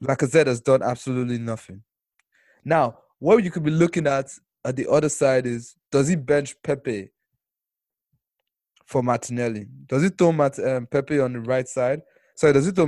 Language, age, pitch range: English, 20-39, 125-155 Hz